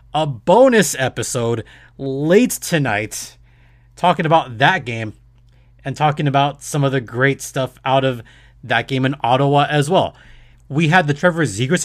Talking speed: 150 wpm